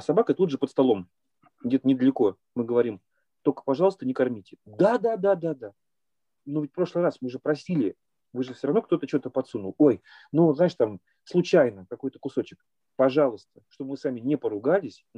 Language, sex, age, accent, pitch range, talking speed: Russian, male, 30-49, native, 135-190 Hz, 190 wpm